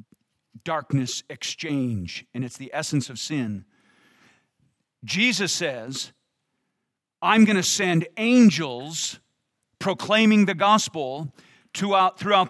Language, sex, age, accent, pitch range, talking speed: English, male, 40-59, American, 145-210 Hz, 90 wpm